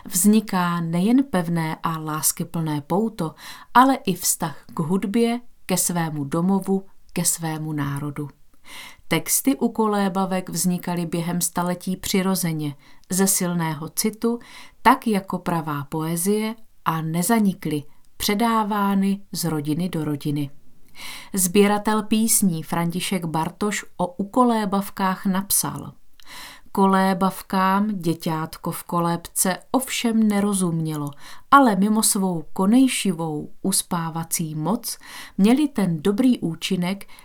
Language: Czech